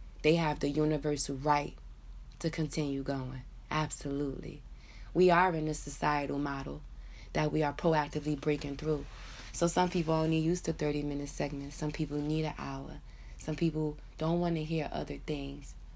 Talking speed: 160 wpm